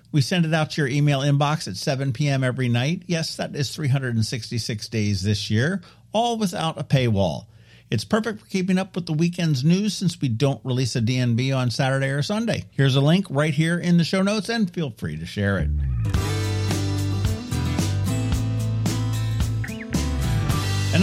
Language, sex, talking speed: English, male, 170 wpm